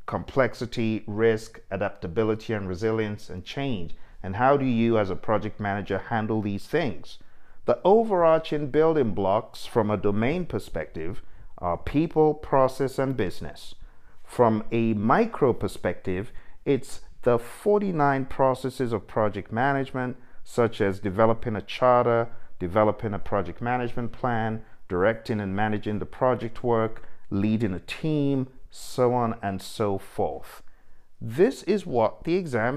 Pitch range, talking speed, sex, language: 105-130 Hz, 130 wpm, male, English